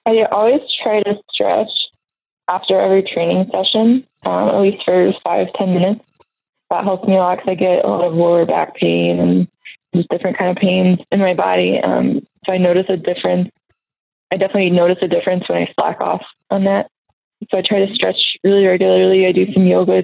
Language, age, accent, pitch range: English, 20-39, American, 170-200 Hz